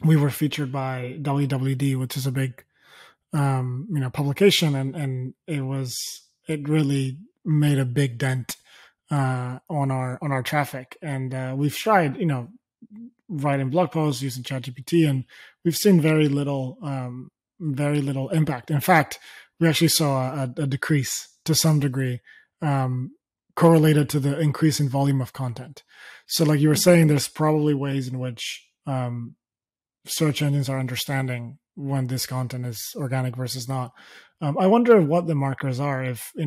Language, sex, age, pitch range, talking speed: English, male, 20-39, 130-150 Hz, 165 wpm